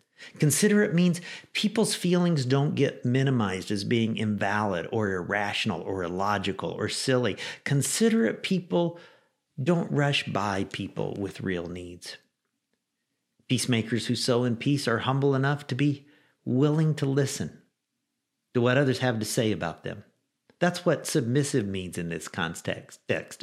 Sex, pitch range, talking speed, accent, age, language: male, 115-155 Hz, 135 wpm, American, 50-69, English